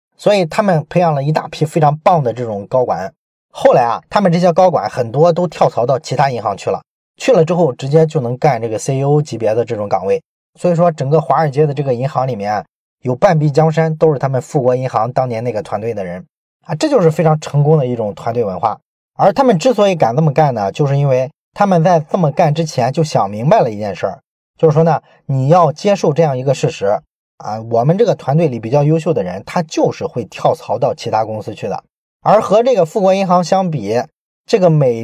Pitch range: 135-175 Hz